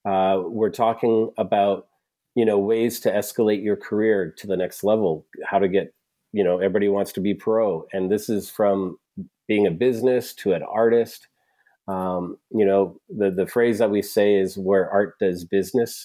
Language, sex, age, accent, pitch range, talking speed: English, male, 40-59, American, 95-115 Hz, 185 wpm